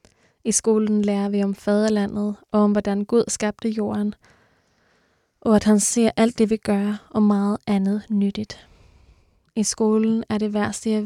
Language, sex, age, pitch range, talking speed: Danish, female, 20-39, 205-225 Hz, 165 wpm